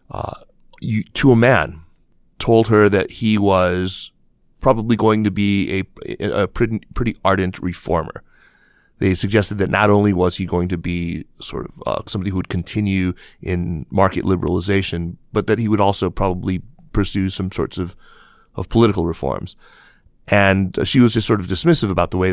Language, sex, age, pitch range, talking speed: English, male, 30-49, 90-105 Hz, 170 wpm